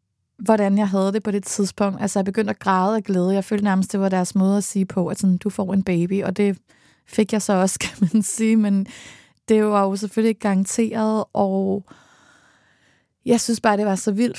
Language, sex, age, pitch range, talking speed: Danish, female, 20-39, 190-215 Hz, 225 wpm